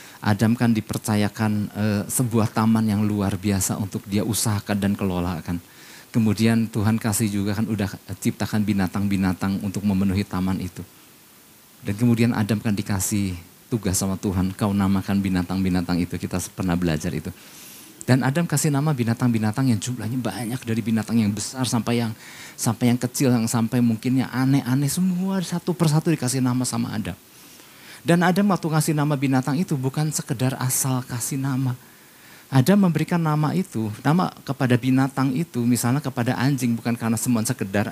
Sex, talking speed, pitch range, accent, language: male, 155 wpm, 100-130 Hz, native, Indonesian